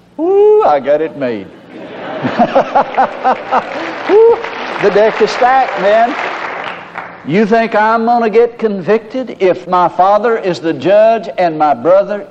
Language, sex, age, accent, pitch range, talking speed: English, male, 60-79, American, 135-210 Hz, 130 wpm